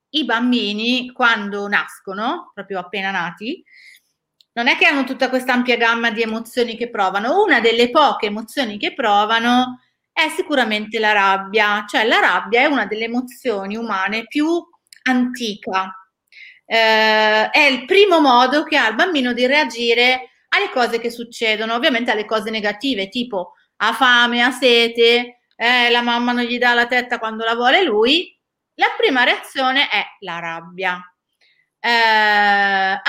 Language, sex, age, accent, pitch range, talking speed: Italian, female, 30-49, native, 215-275 Hz, 150 wpm